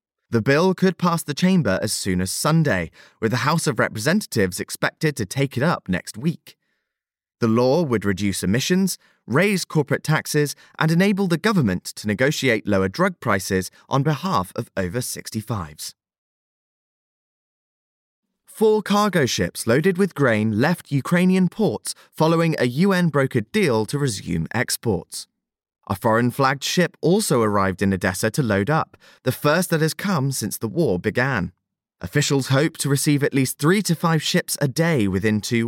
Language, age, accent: English, 20-39, British